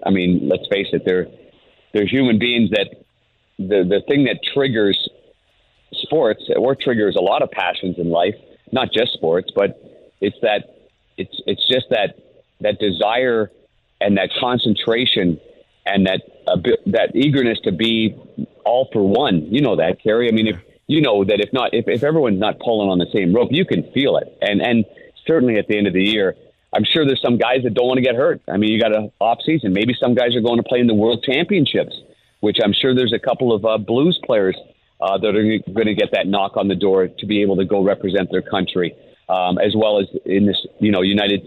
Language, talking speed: English, 215 wpm